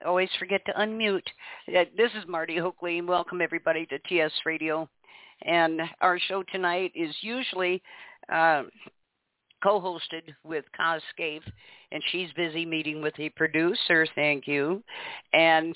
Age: 50-69